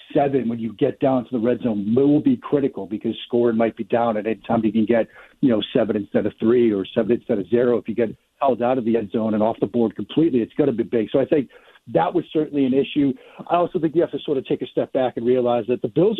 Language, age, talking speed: English, 50-69, 295 wpm